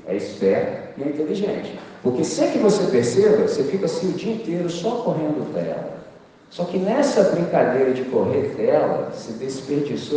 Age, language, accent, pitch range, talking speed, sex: 50-69, Portuguese, Brazilian, 140-195 Hz, 165 wpm, male